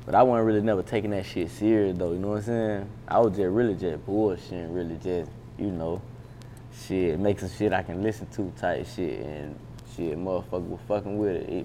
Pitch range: 85-105 Hz